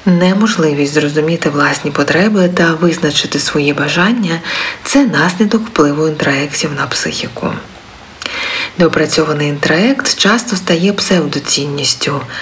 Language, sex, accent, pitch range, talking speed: Ukrainian, female, native, 150-205 Hz, 95 wpm